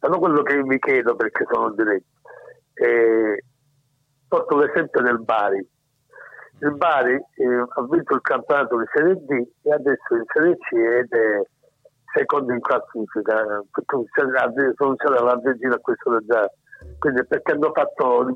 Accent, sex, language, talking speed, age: native, male, Italian, 150 wpm, 60-79